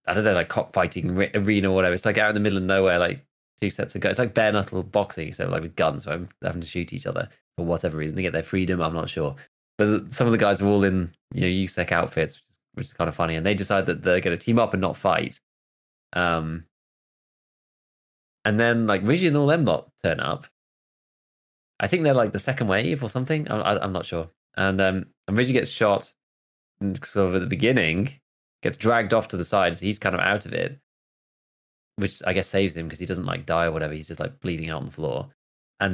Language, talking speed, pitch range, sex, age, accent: English, 245 wpm, 90-110 Hz, male, 20-39, British